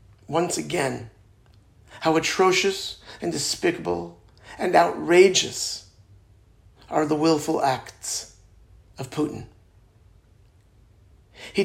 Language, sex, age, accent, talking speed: English, male, 50-69, American, 75 wpm